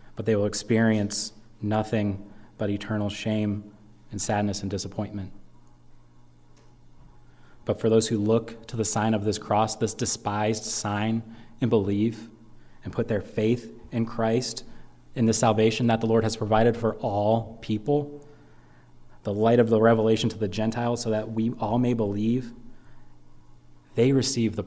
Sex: male